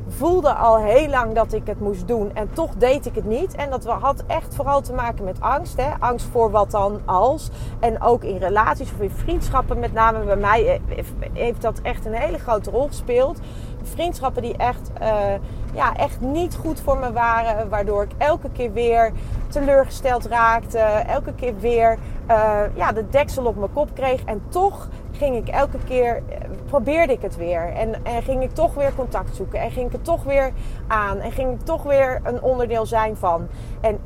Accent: Dutch